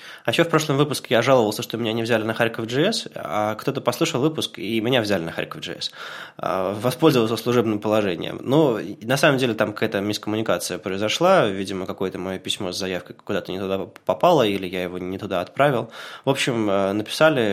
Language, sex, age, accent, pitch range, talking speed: Russian, male, 20-39, native, 100-125 Hz, 190 wpm